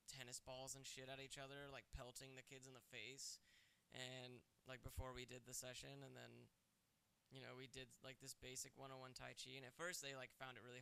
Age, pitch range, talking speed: 20-39, 120-135 Hz, 225 wpm